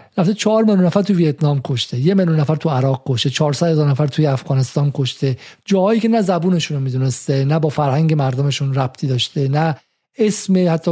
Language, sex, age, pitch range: Persian, male, 50-69, 145-185 Hz